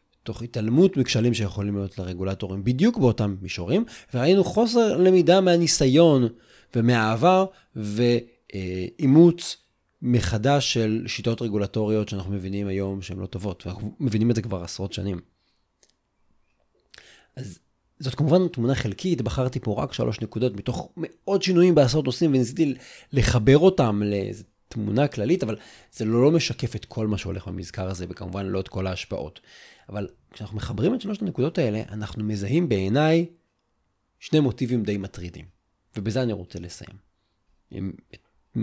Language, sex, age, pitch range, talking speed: Hebrew, male, 30-49, 100-135 Hz, 135 wpm